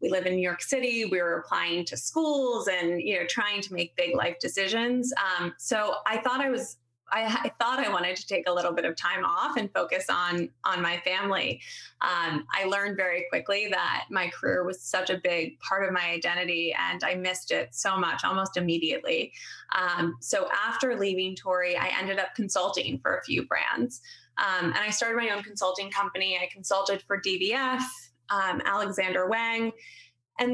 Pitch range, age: 180-230 Hz, 20-39